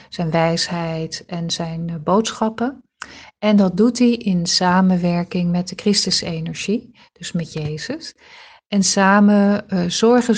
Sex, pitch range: female, 170-210 Hz